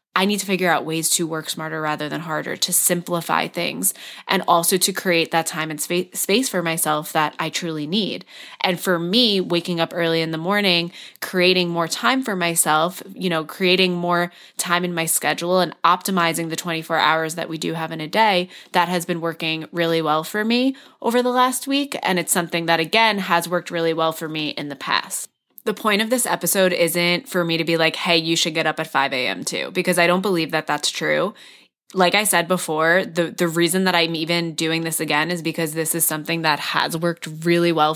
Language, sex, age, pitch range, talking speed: English, female, 20-39, 160-185 Hz, 220 wpm